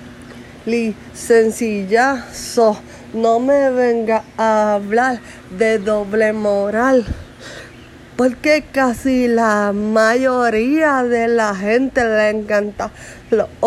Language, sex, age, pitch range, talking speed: English, female, 30-49, 205-235 Hz, 90 wpm